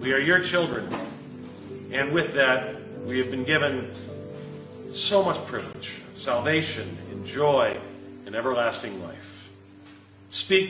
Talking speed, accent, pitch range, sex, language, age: 120 wpm, American, 130-170 Hz, male, English, 40-59